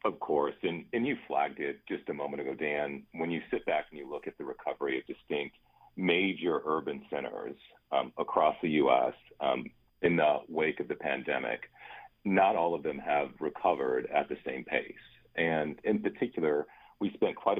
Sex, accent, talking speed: male, American, 185 wpm